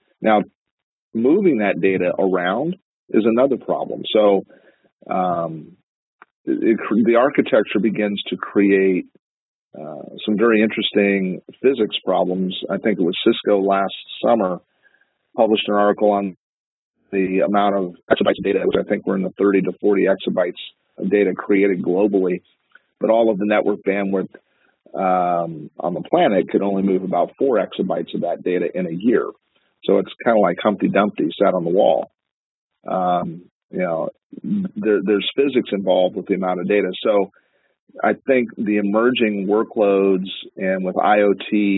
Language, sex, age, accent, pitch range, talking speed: English, male, 40-59, American, 95-105 Hz, 150 wpm